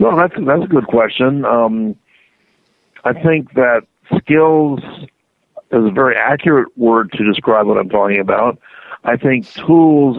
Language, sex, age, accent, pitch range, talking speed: English, male, 60-79, American, 115-150 Hz, 155 wpm